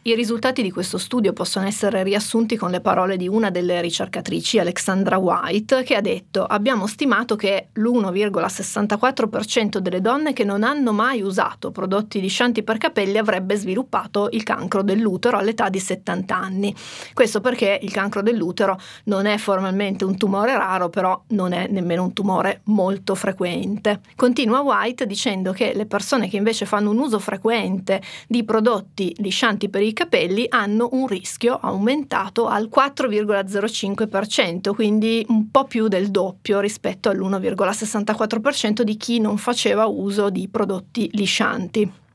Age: 30-49